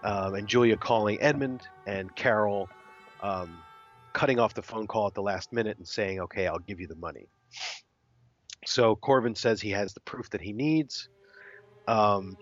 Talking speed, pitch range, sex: 175 wpm, 100-130 Hz, male